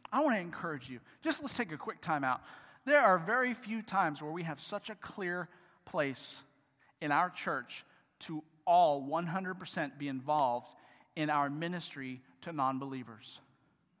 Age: 40-59